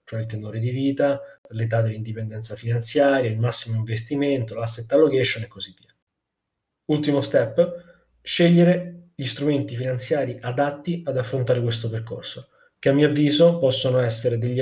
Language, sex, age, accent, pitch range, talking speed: Italian, male, 20-39, native, 115-135 Hz, 140 wpm